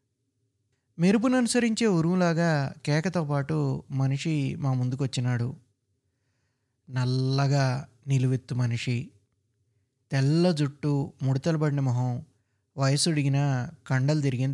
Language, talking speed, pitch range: Telugu, 70 wpm, 125-180 Hz